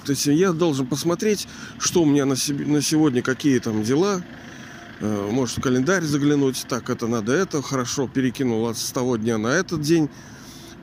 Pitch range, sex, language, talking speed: 115-150 Hz, male, Russian, 170 wpm